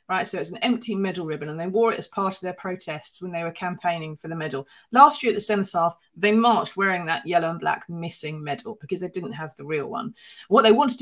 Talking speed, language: 260 wpm, English